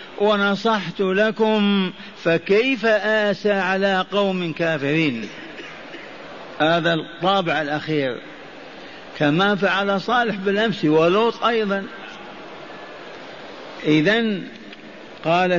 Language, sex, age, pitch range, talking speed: Arabic, male, 50-69, 165-205 Hz, 70 wpm